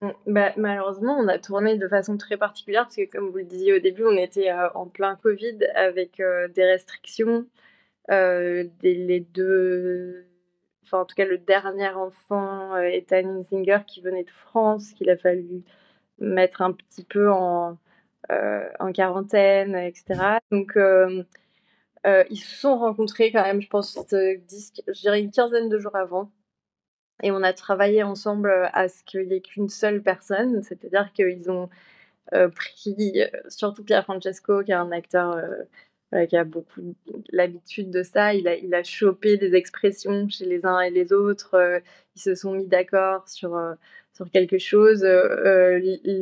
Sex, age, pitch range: female, 20-39, 185-205 Hz